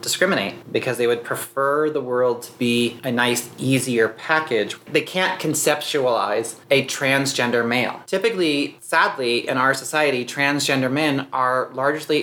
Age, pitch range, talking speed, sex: 30-49, 125-145 Hz, 135 wpm, male